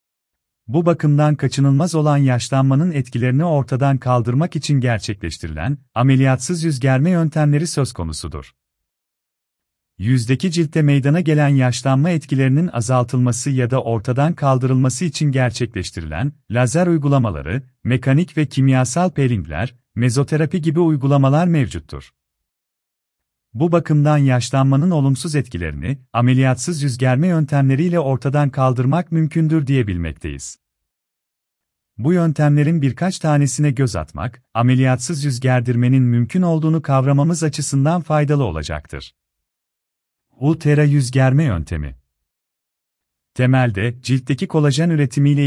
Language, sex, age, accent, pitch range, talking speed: Turkish, male, 40-59, native, 115-150 Hz, 100 wpm